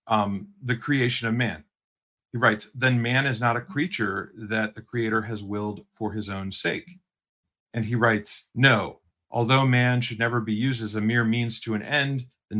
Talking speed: 190 wpm